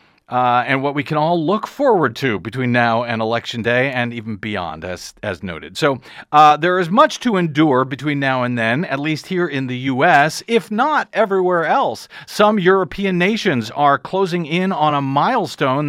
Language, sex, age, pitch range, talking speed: English, male, 40-59, 130-180 Hz, 190 wpm